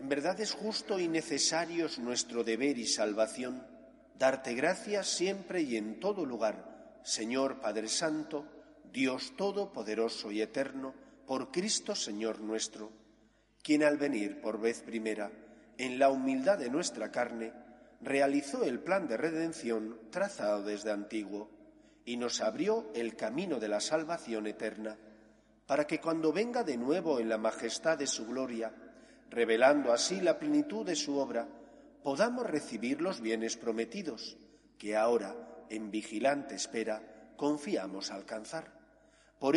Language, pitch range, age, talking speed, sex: Spanish, 110-165 Hz, 40-59, 135 wpm, male